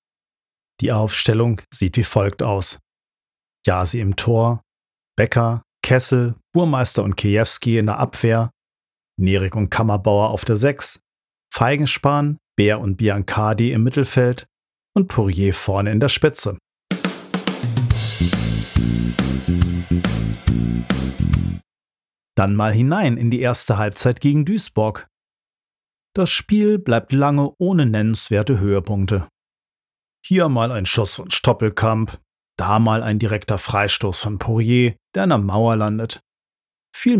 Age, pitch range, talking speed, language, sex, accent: 50-69, 100-130 Hz, 115 wpm, German, male, German